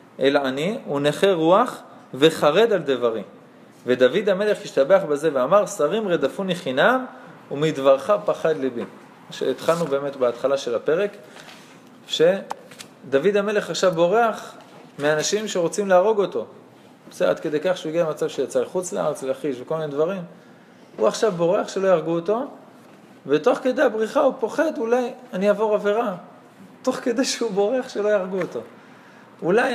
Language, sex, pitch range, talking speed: Hebrew, male, 155-220 Hz, 135 wpm